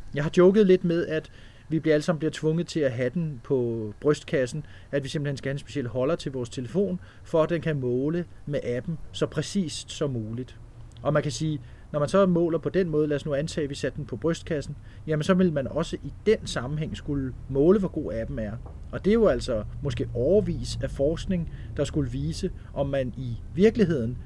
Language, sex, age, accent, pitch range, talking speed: Danish, male, 40-59, native, 125-165 Hz, 225 wpm